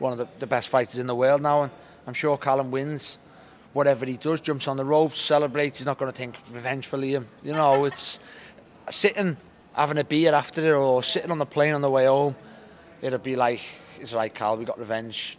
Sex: male